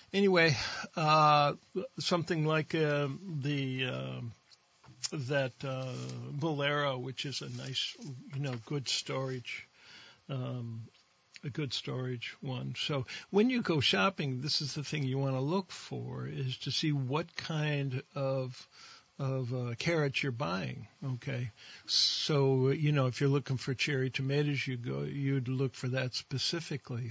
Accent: American